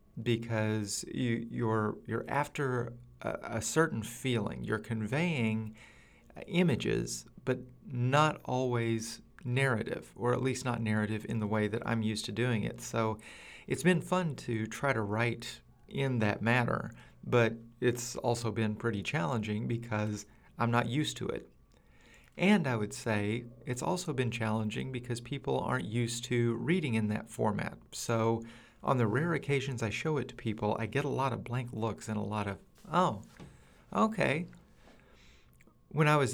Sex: male